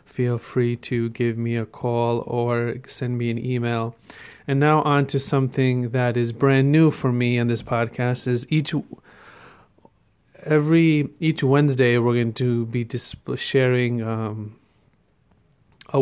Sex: male